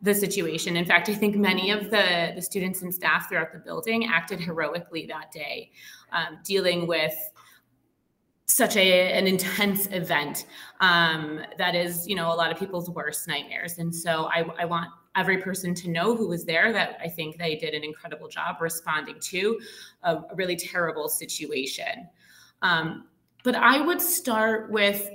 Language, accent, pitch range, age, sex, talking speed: English, American, 170-225 Hz, 30-49, female, 170 wpm